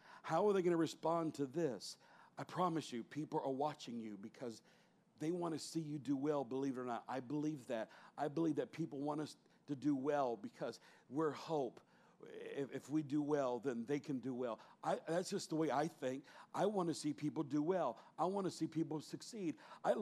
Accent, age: American, 50-69